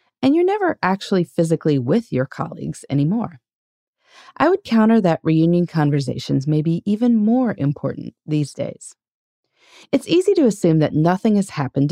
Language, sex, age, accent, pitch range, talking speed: English, female, 30-49, American, 135-220 Hz, 150 wpm